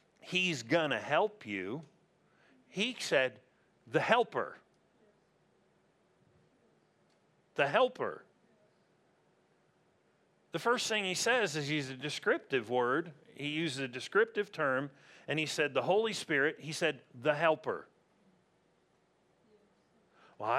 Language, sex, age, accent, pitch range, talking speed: English, male, 50-69, American, 140-195 Hz, 110 wpm